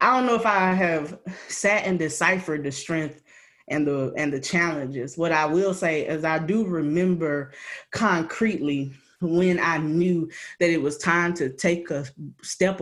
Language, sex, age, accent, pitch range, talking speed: English, female, 20-39, American, 150-185 Hz, 170 wpm